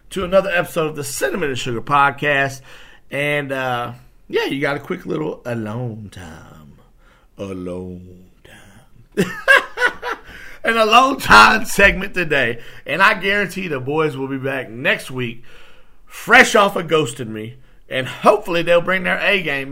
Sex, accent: male, American